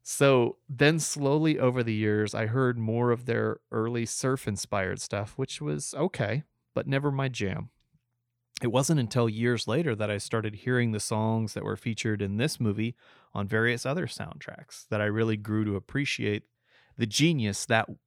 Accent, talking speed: American, 175 wpm